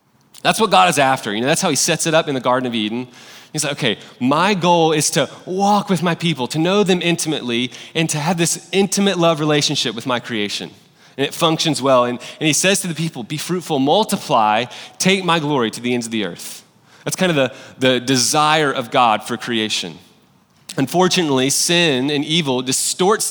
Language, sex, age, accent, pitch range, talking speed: English, male, 30-49, American, 140-185 Hz, 210 wpm